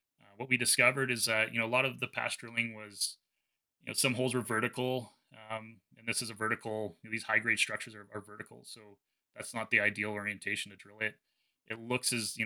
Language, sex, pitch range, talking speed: English, male, 100-115 Hz, 230 wpm